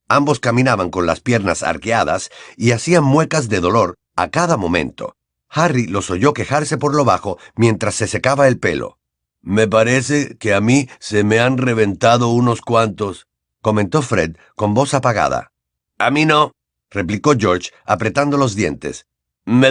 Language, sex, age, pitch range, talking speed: Spanish, male, 50-69, 95-140 Hz, 155 wpm